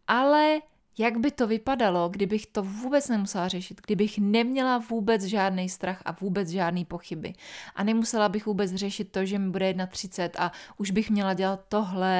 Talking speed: 170 wpm